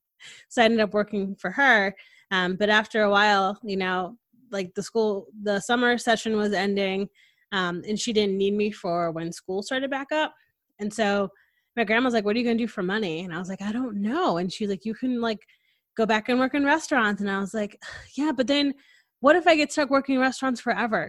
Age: 20-39